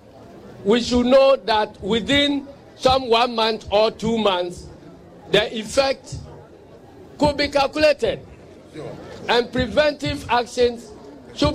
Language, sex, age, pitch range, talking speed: English, male, 50-69, 215-270 Hz, 105 wpm